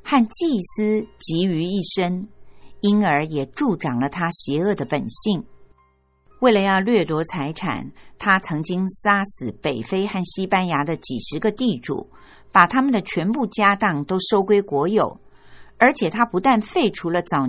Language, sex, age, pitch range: Chinese, female, 50-69, 160-225 Hz